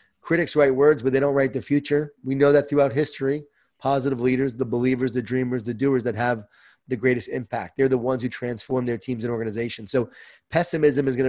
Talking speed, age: 215 wpm, 30-49